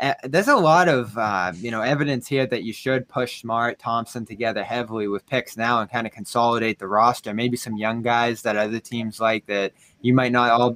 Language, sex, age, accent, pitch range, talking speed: English, male, 20-39, American, 115-155 Hz, 220 wpm